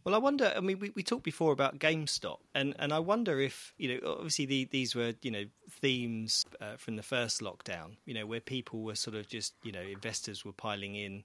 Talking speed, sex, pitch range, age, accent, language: 235 wpm, male, 105-120 Hz, 30-49, British, English